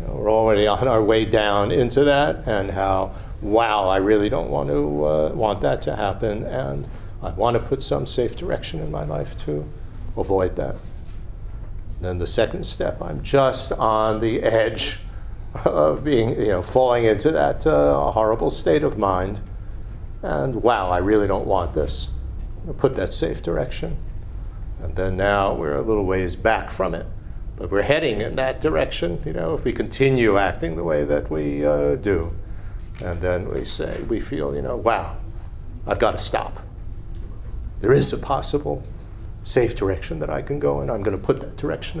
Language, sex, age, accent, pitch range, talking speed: English, male, 50-69, American, 90-110 Hz, 180 wpm